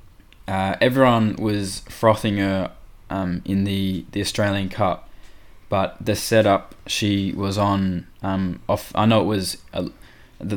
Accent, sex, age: Australian, male, 20-39